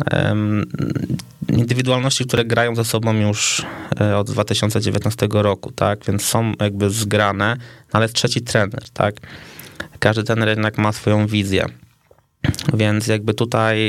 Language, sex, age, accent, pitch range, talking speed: Polish, male, 20-39, native, 105-120 Hz, 120 wpm